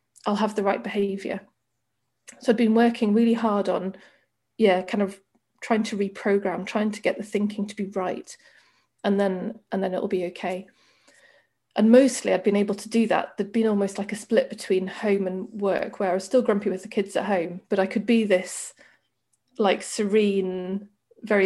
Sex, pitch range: female, 195-230 Hz